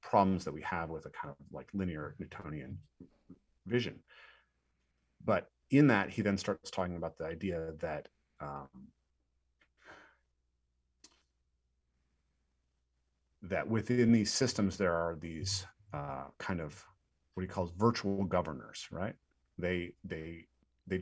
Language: English